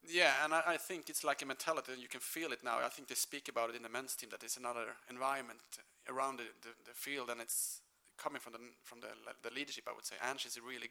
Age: 30-49